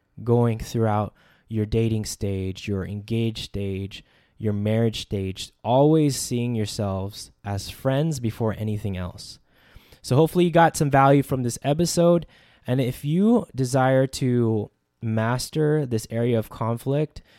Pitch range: 110-135 Hz